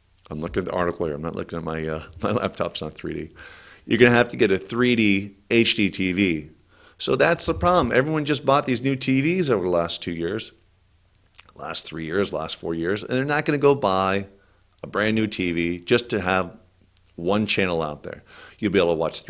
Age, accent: 40-59, American